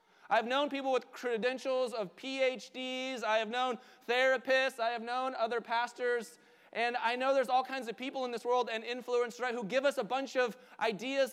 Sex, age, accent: male, 20-39, American